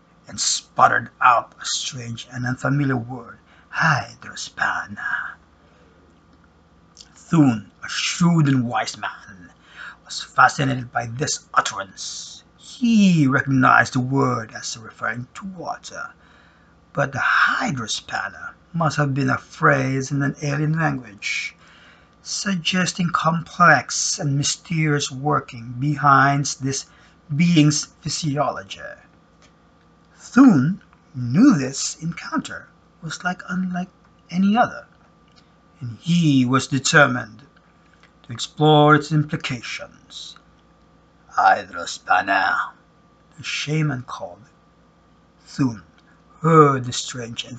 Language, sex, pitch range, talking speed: English, male, 130-165 Hz, 95 wpm